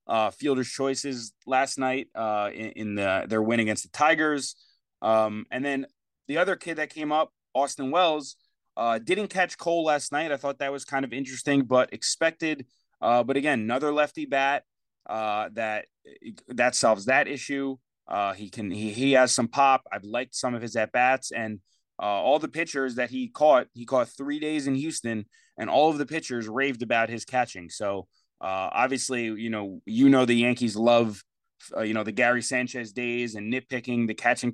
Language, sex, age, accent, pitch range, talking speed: English, male, 20-39, American, 115-140 Hz, 190 wpm